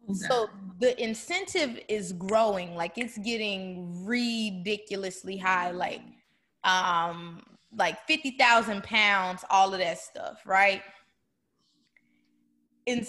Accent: American